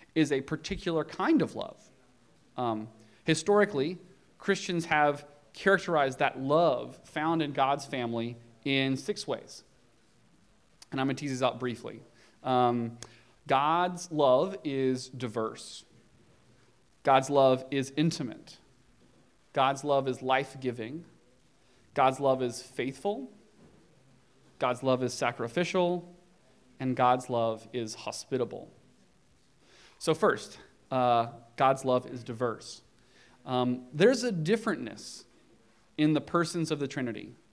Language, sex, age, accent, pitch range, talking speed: English, male, 30-49, American, 125-160 Hz, 110 wpm